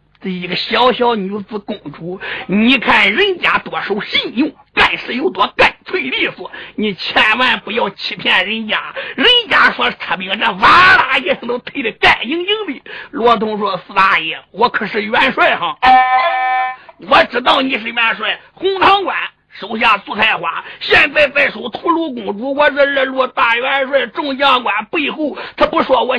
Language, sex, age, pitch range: Chinese, male, 50-69, 225-320 Hz